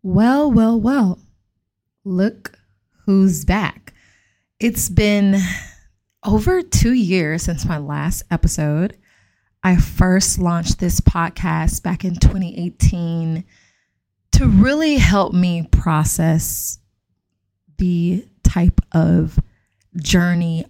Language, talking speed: English, 95 wpm